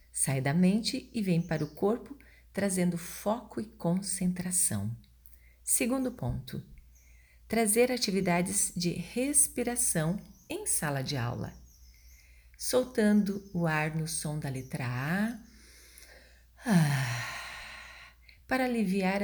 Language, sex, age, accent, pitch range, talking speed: Portuguese, female, 40-59, Brazilian, 145-215 Hz, 100 wpm